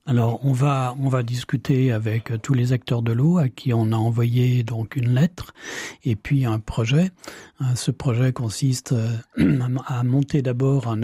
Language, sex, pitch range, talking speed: French, male, 120-150 Hz, 180 wpm